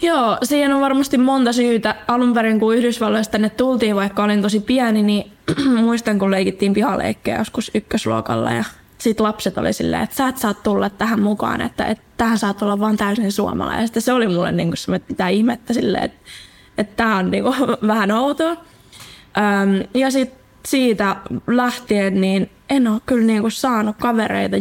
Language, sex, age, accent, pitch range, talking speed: Finnish, female, 20-39, native, 200-235 Hz, 170 wpm